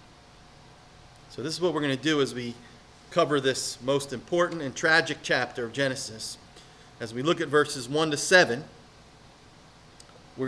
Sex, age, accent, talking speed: male, 40-59, American, 160 wpm